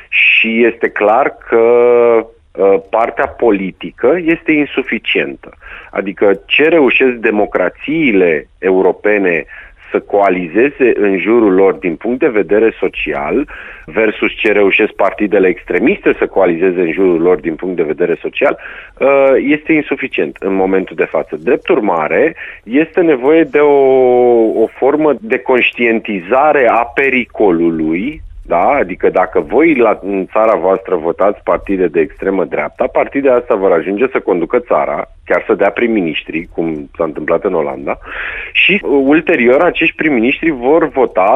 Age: 40-59